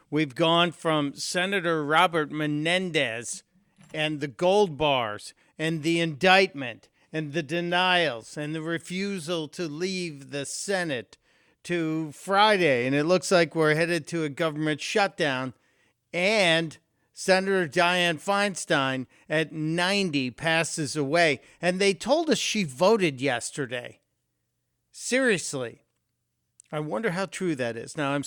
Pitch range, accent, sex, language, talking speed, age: 140-180 Hz, American, male, English, 125 wpm, 50-69